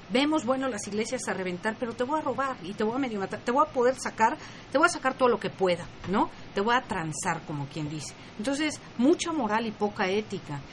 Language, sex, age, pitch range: Spanish, female, 40-59, 185-255 Hz